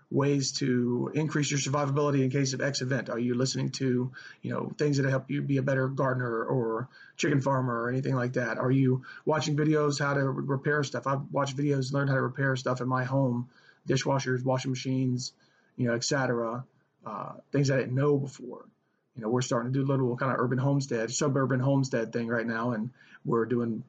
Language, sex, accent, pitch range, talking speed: English, male, American, 120-140 Hz, 205 wpm